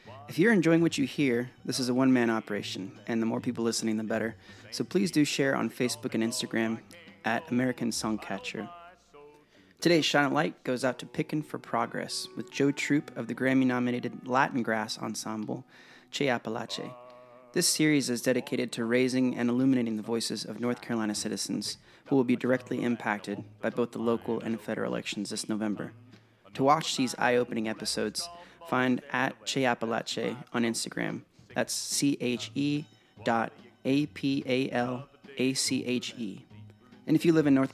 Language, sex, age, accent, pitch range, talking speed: English, male, 30-49, American, 115-140 Hz, 155 wpm